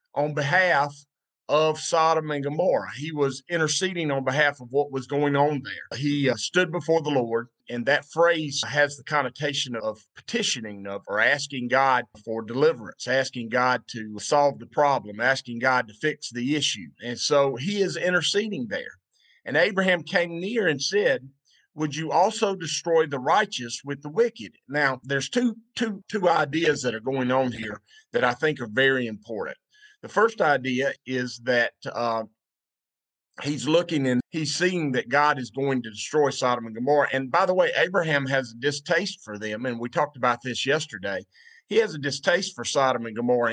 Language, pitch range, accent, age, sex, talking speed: English, 125-160 Hz, American, 50-69, male, 180 wpm